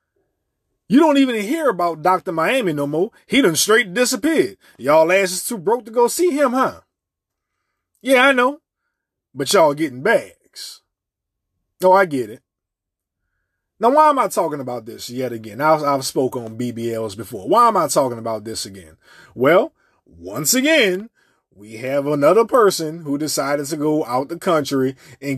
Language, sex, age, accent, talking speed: English, male, 20-39, American, 170 wpm